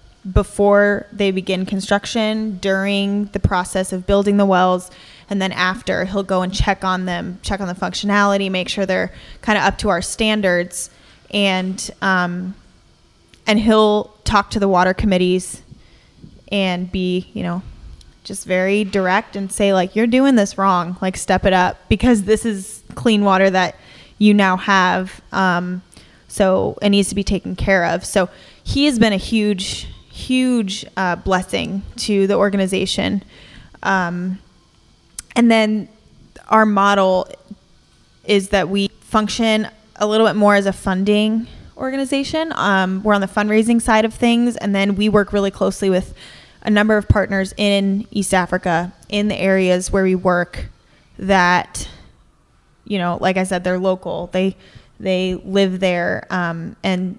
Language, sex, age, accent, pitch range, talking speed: English, female, 10-29, American, 185-210 Hz, 155 wpm